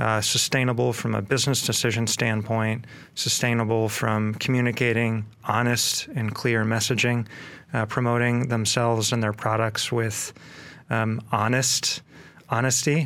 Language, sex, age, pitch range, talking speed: English, male, 30-49, 110-130 Hz, 110 wpm